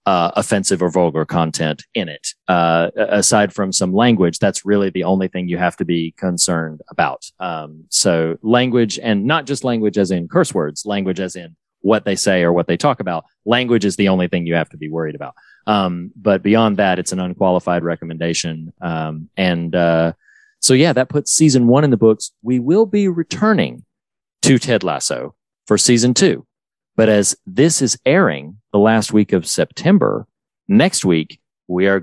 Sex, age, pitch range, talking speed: male, 40-59, 85-110 Hz, 185 wpm